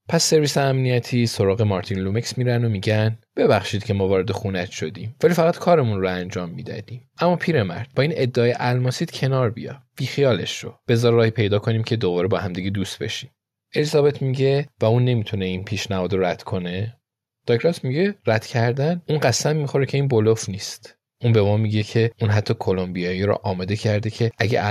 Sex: male